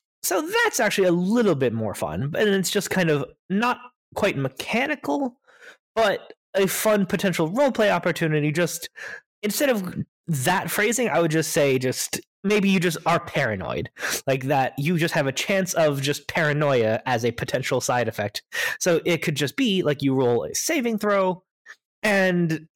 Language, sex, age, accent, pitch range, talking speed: English, male, 20-39, American, 145-205 Hz, 170 wpm